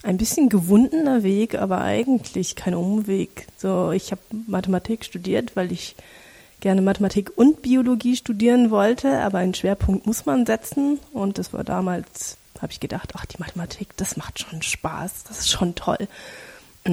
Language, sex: German, female